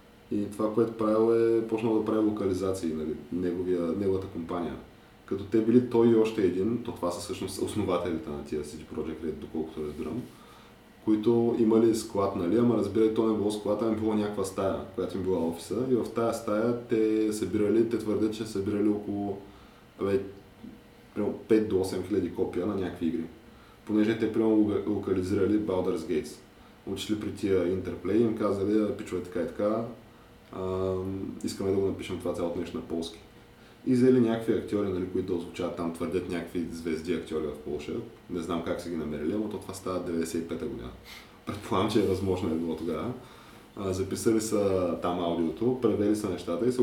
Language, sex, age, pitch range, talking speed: Bulgarian, male, 20-39, 90-110 Hz, 175 wpm